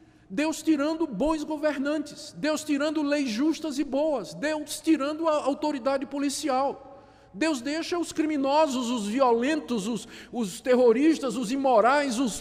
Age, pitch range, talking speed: 50-69, 195-305 Hz, 130 wpm